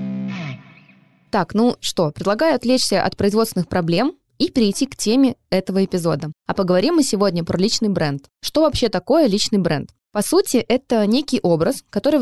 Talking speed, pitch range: 155 wpm, 180-230 Hz